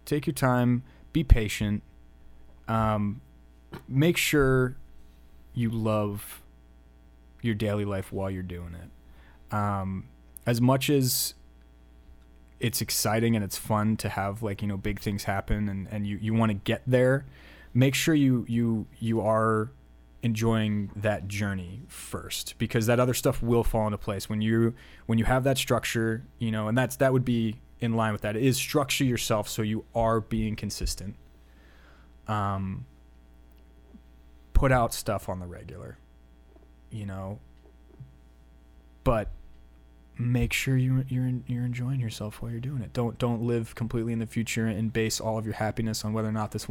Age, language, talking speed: 20-39, English, 165 wpm